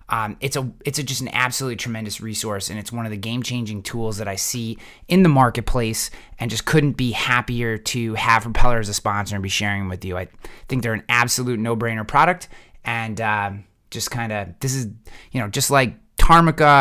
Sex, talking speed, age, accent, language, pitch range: male, 210 wpm, 20-39, American, English, 110-125 Hz